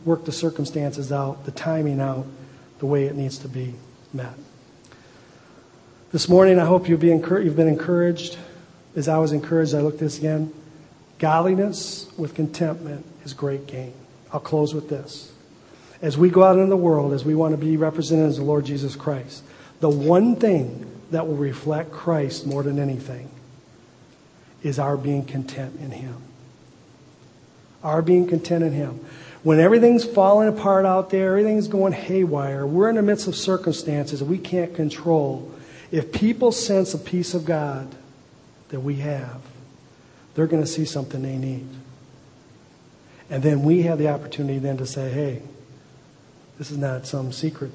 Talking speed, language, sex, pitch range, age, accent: 165 wpm, English, male, 135-165 Hz, 40-59, American